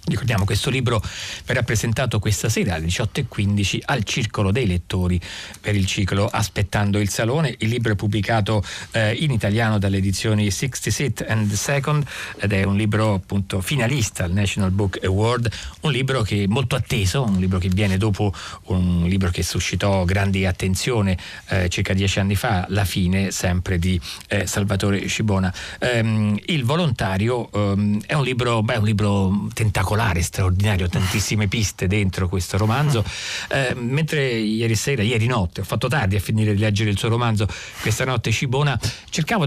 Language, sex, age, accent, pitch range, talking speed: Italian, male, 40-59, native, 95-120 Hz, 160 wpm